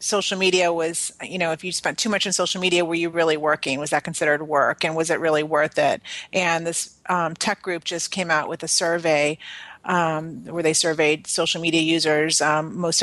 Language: English